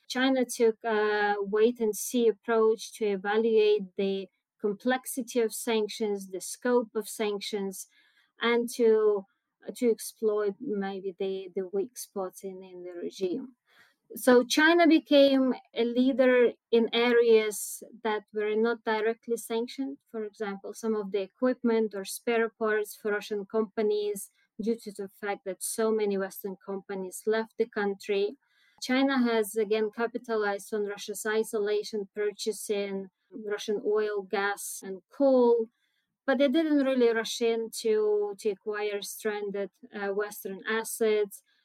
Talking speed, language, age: 130 wpm, English, 20-39